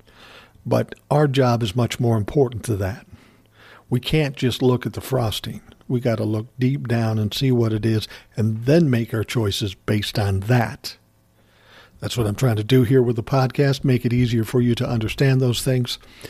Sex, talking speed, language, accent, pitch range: male, 200 wpm, English, American, 110-130 Hz